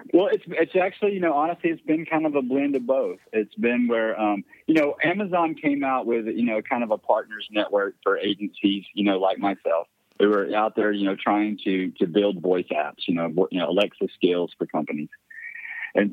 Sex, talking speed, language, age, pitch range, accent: male, 220 wpm, English, 40-59, 100-125 Hz, American